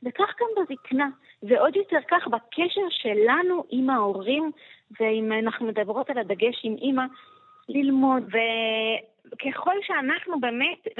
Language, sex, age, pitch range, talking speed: Hebrew, female, 20-39, 215-275 Hz, 110 wpm